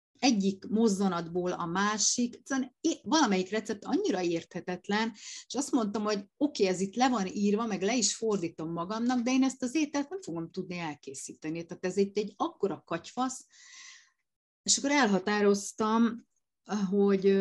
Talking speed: 150 wpm